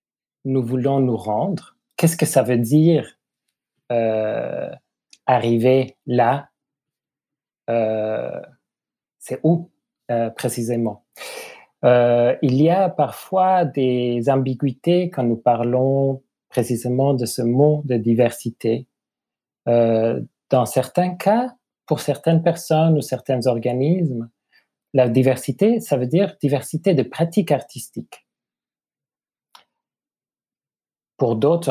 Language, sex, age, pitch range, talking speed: French, male, 40-59, 120-150 Hz, 105 wpm